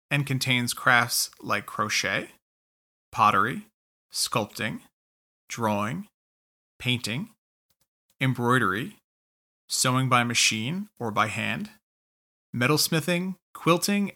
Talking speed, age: 75 wpm, 30-49